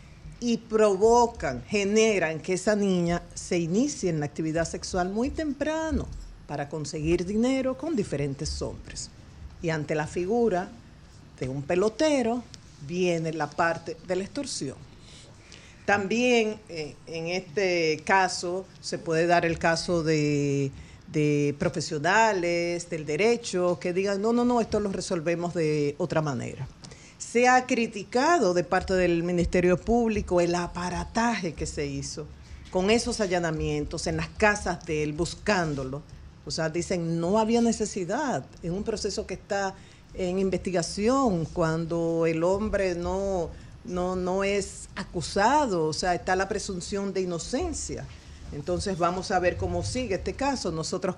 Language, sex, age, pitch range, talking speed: Spanish, female, 50-69, 160-205 Hz, 140 wpm